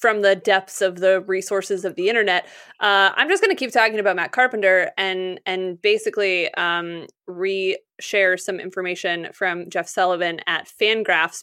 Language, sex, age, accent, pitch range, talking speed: English, female, 20-39, American, 190-250 Hz, 165 wpm